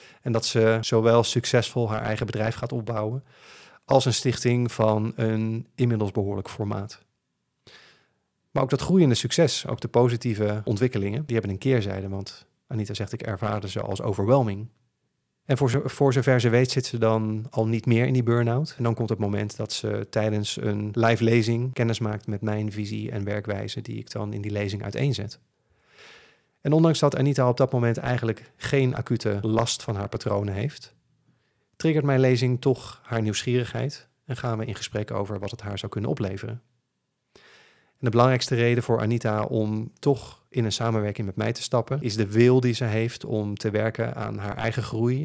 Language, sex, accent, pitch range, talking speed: Dutch, male, Dutch, 105-125 Hz, 185 wpm